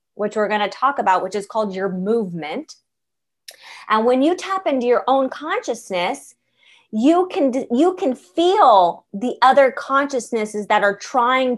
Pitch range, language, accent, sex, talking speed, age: 210-275 Hz, English, American, female, 150 wpm, 30-49